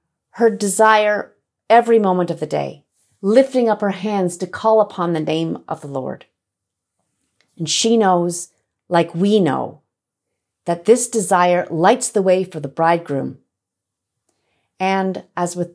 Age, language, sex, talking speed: 40-59, English, female, 140 wpm